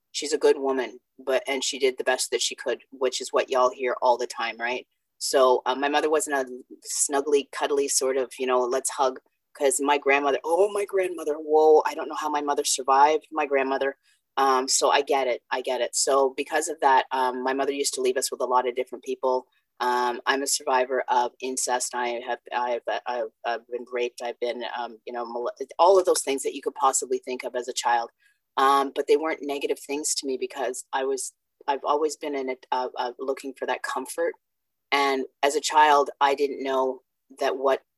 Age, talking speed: 30-49, 225 wpm